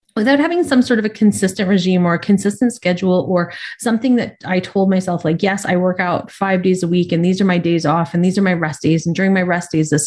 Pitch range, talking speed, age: 165-210 Hz, 270 wpm, 30-49